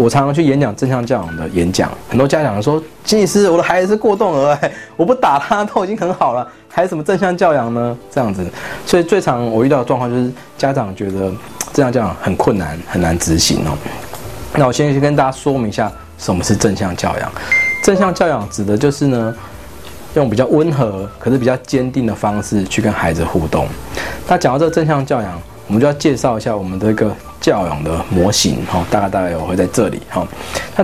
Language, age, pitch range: Chinese, 20-39, 95-145 Hz